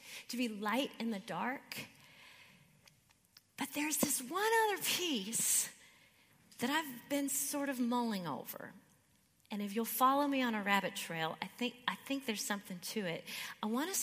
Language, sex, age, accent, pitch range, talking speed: English, female, 40-59, American, 195-255 Hz, 165 wpm